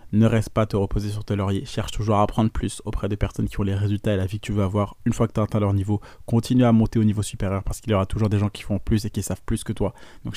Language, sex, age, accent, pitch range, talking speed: French, male, 20-39, French, 100-115 Hz, 340 wpm